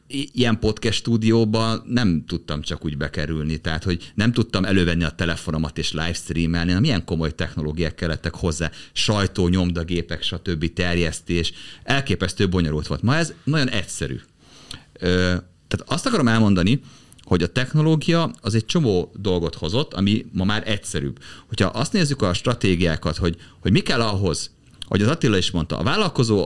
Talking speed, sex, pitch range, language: 155 wpm, male, 85-125 Hz, Hungarian